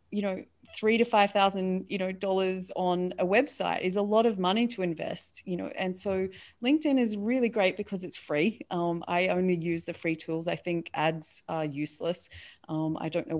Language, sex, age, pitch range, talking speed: English, female, 30-49, 155-190 Hz, 205 wpm